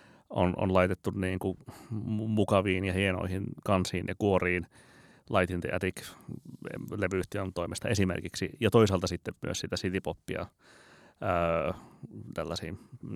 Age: 30-49